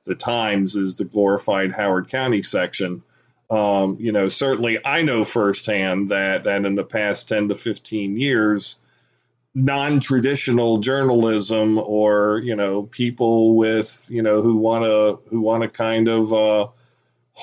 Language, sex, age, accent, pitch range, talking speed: English, male, 40-59, American, 105-125 Hz, 145 wpm